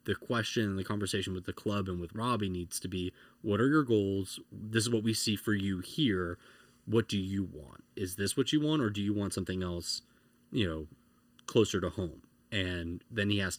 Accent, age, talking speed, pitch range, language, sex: American, 20-39, 215 wpm, 90-110 Hz, English, male